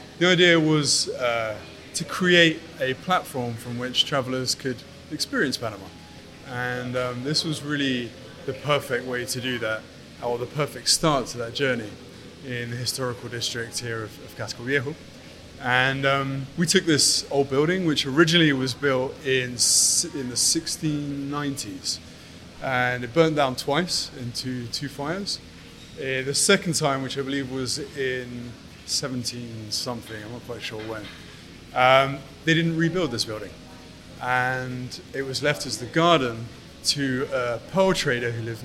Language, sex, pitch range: English, male, 120-145 Hz